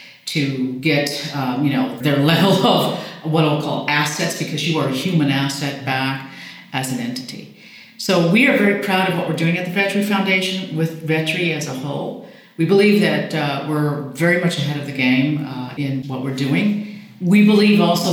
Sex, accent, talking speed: female, American, 190 wpm